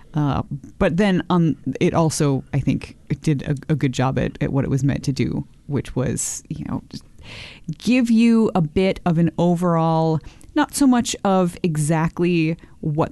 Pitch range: 140-175 Hz